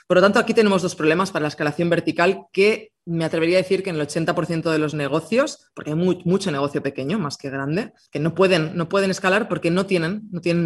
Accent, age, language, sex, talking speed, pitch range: Spanish, 20-39, Spanish, female, 240 wpm, 155-195 Hz